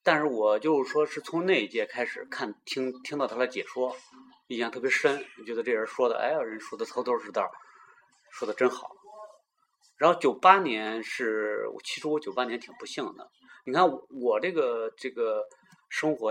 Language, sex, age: Chinese, male, 30-49